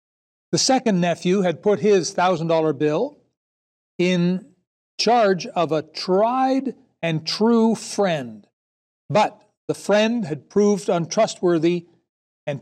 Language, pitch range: English, 165-215 Hz